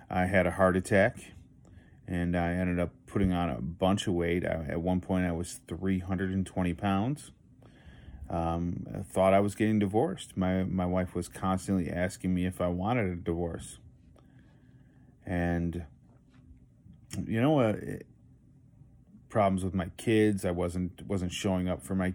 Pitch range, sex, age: 90-105 Hz, male, 30-49